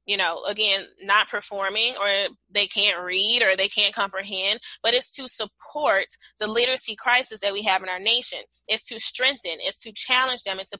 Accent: American